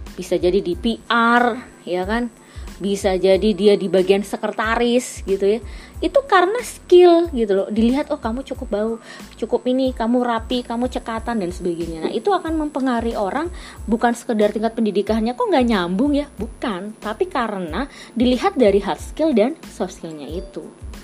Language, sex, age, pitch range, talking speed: Indonesian, female, 20-39, 200-260 Hz, 160 wpm